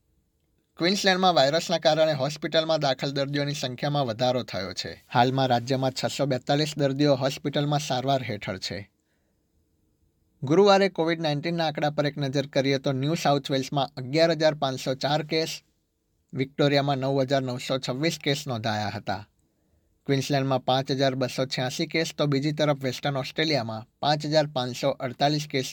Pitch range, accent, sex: 120-150 Hz, native, male